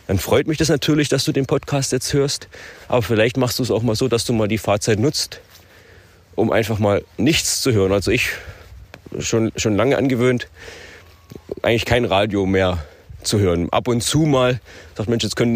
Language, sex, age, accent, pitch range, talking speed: German, male, 30-49, German, 95-135 Hz, 200 wpm